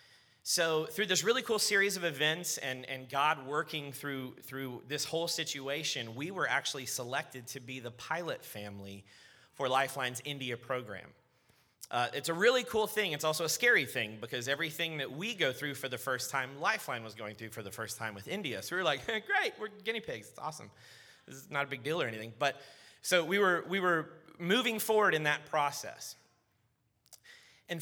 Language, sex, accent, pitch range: English, male, American, 125-160 Hz